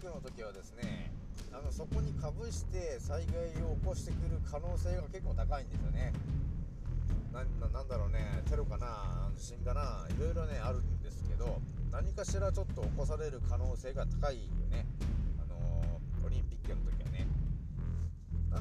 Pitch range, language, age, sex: 75-90 Hz, Japanese, 40-59, male